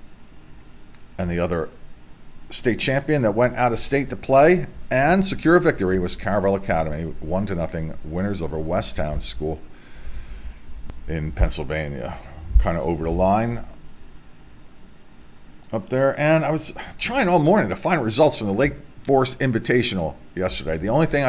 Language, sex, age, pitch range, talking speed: English, male, 40-59, 80-105 Hz, 150 wpm